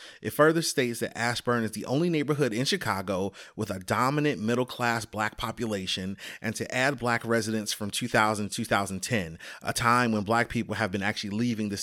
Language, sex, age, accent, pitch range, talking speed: English, male, 30-49, American, 110-125 Hz, 185 wpm